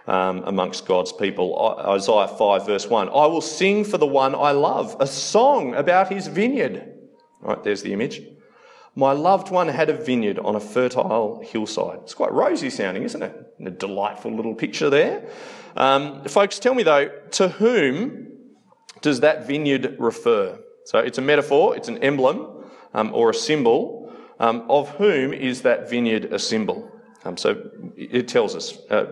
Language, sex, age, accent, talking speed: English, male, 30-49, Australian, 170 wpm